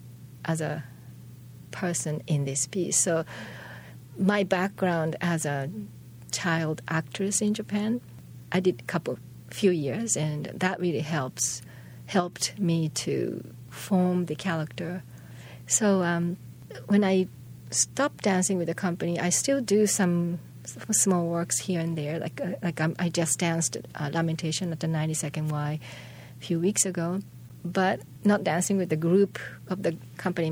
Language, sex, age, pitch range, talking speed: English, female, 40-59, 130-185 Hz, 150 wpm